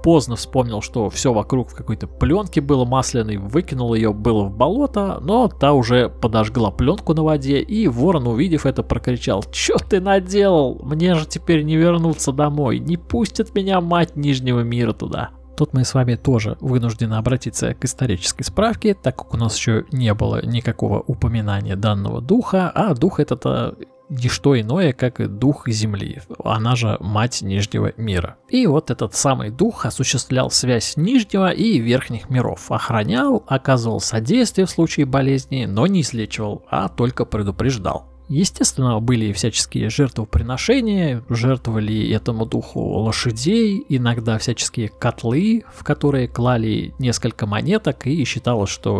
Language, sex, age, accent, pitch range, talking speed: Russian, male, 20-39, native, 110-155 Hz, 145 wpm